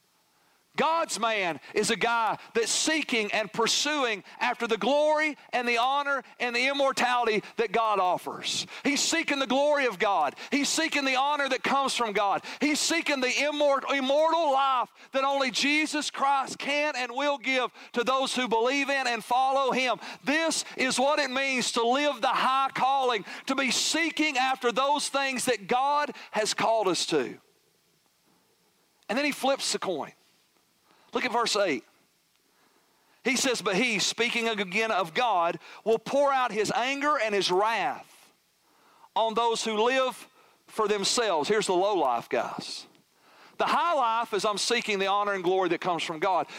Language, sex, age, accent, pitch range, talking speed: English, male, 40-59, American, 205-275 Hz, 165 wpm